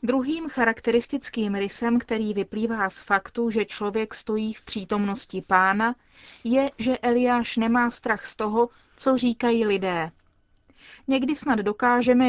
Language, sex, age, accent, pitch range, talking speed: Czech, female, 30-49, native, 200-240 Hz, 125 wpm